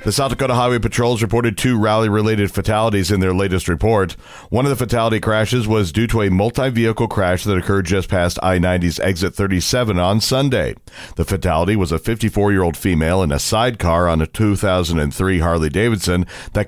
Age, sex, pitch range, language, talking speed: 40-59, male, 90-115 Hz, English, 170 wpm